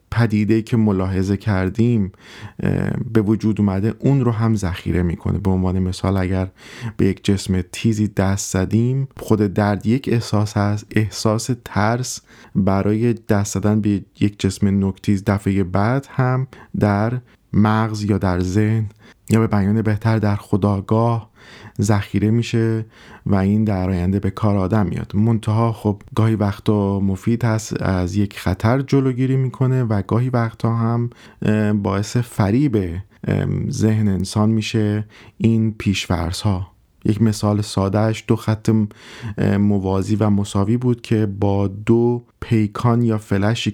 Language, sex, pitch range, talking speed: Persian, male, 100-110 Hz, 135 wpm